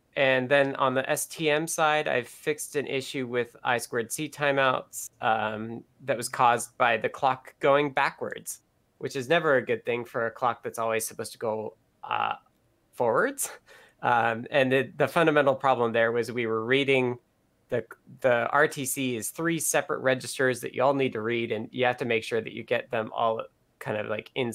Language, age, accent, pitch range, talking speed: English, 20-39, American, 120-145 Hz, 195 wpm